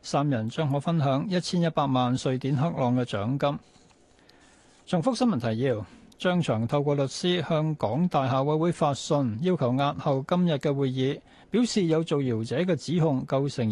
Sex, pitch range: male, 130-175 Hz